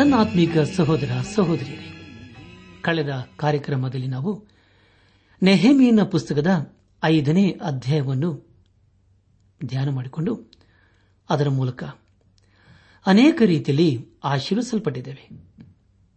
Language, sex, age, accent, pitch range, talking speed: Kannada, male, 60-79, native, 100-160 Hz, 65 wpm